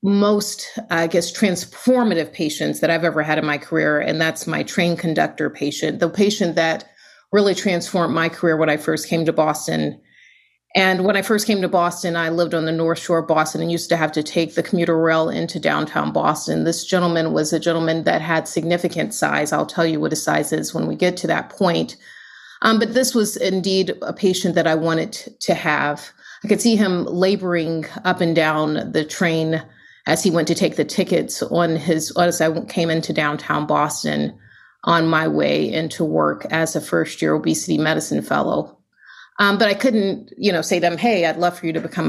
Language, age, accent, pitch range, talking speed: English, 30-49, American, 160-180 Hz, 205 wpm